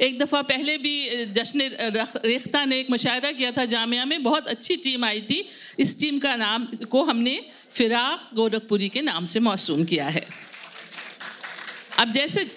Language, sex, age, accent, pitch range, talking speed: Hindi, female, 50-69, native, 225-285 Hz, 160 wpm